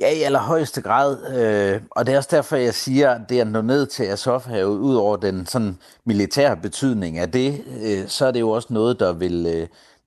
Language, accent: Danish, native